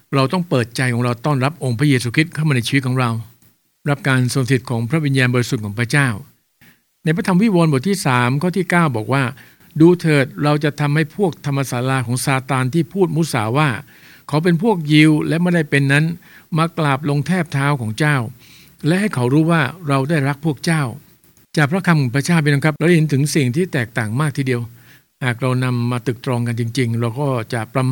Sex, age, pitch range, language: male, 60-79, 130-155 Hz, English